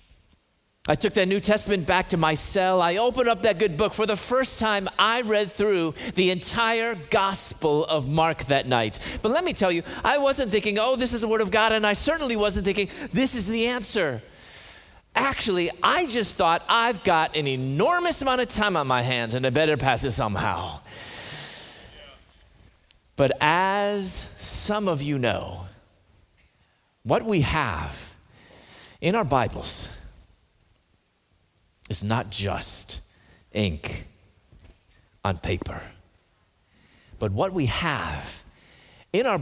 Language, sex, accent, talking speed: English, male, American, 150 wpm